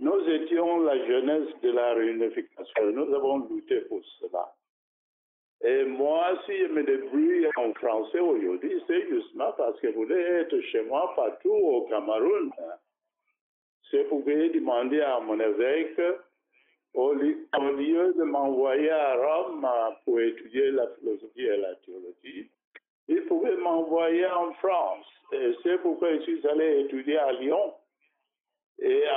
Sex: male